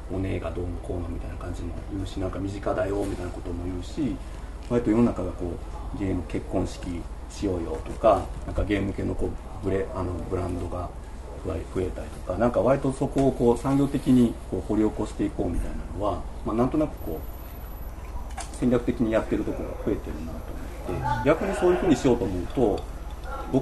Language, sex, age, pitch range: Japanese, male, 40-59, 80-110 Hz